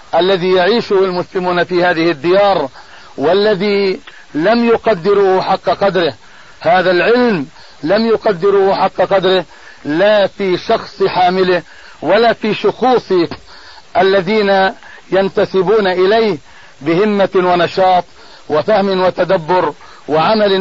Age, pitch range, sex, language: 50-69, 180-205 Hz, male, Arabic